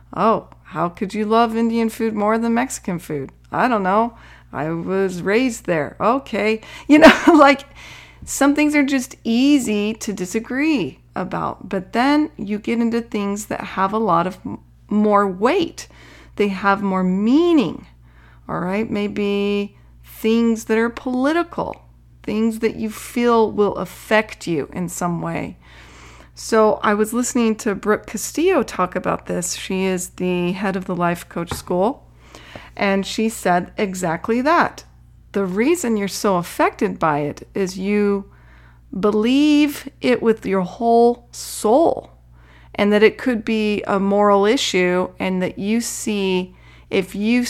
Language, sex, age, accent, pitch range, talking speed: English, female, 30-49, American, 180-230 Hz, 150 wpm